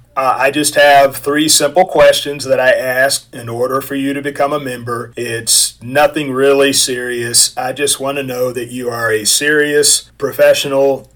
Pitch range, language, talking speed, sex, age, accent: 120-145 Hz, English, 175 wpm, male, 40-59, American